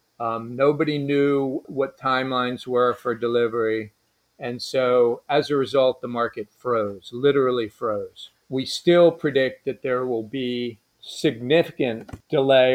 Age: 40-59